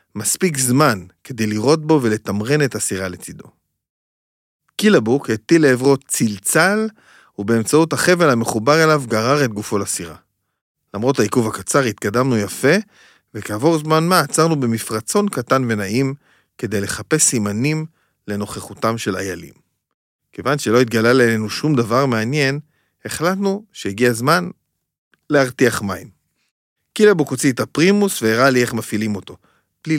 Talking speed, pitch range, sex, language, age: 120 wpm, 110-155 Hz, male, Hebrew, 40-59